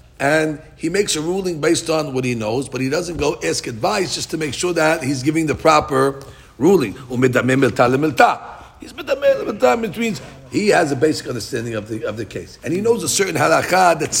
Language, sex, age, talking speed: English, male, 50-69, 190 wpm